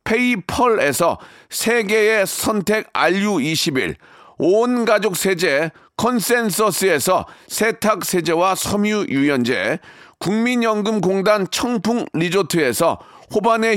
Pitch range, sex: 180-230 Hz, male